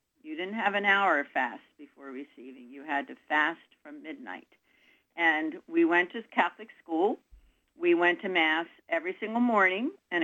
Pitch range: 165-270 Hz